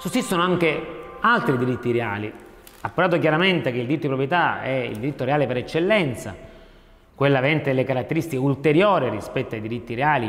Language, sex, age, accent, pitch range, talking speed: Italian, male, 30-49, native, 120-165 Hz, 155 wpm